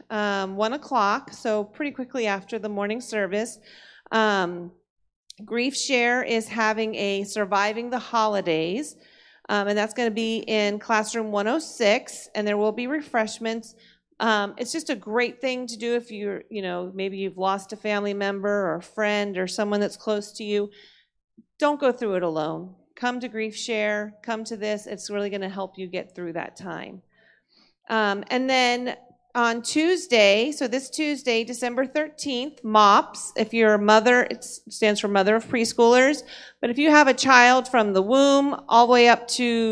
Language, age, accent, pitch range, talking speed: English, 40-59, American, 205-250 Hz, 175 wpm